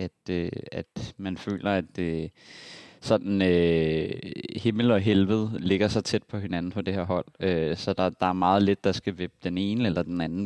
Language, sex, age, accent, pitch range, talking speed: Danish, male, 20-39, native, 90-105 Hz, 205 wpm